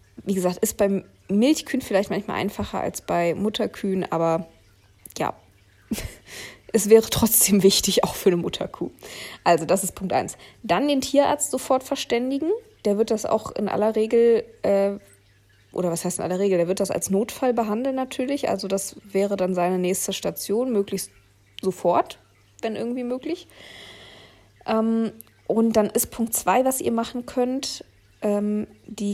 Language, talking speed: German, 155 wpm